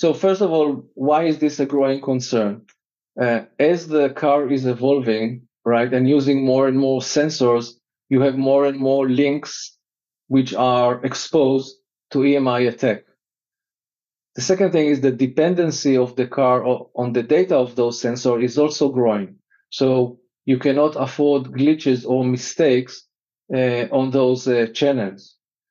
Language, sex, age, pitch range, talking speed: English, male, 40-59, 125-145 Hz, 150 wpm